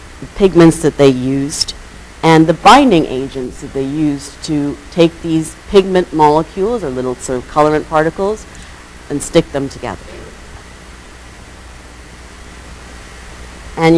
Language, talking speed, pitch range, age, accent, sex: English, 120 wpm, 120-195 Hz, 40-59, American, female